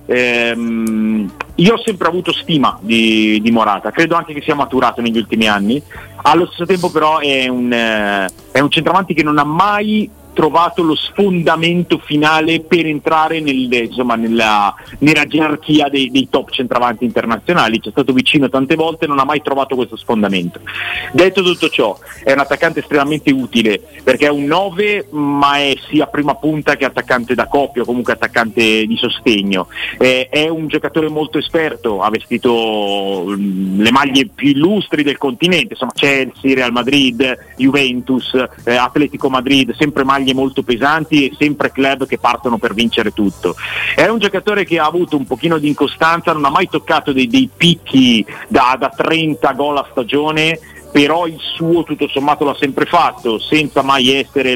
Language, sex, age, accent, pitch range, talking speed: Italian, male, 30-49, native, 120-155 Hz, 165 wpm